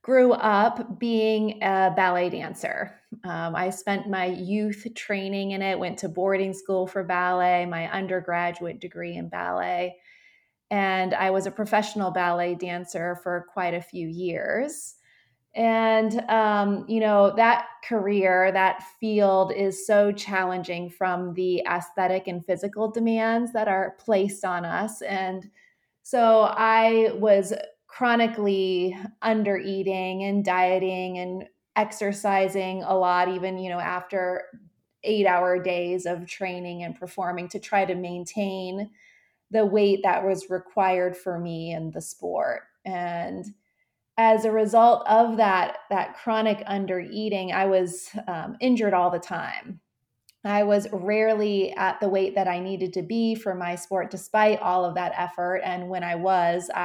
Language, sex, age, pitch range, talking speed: English, female, 30-49, 180-215 Hz, 145 wpm